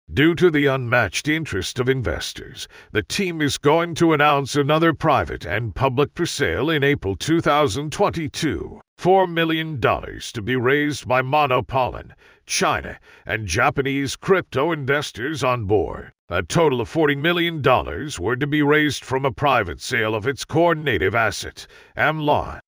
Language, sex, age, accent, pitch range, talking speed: English, male, 50-69, American, 125-155 Hz, 145 wpm